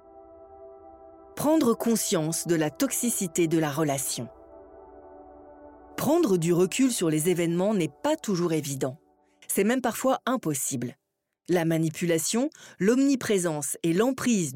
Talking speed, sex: 110 wpm, female